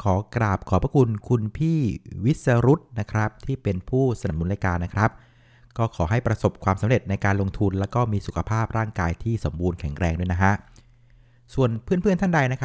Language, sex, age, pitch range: Thai, male, 60-79, 95-125 Hz